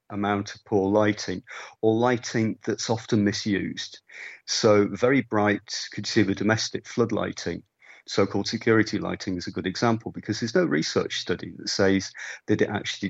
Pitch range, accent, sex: 100-115 Hz, British, male